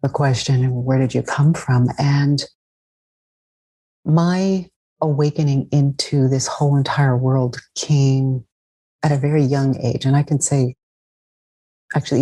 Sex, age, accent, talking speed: female, 40-59, American, 130 wpm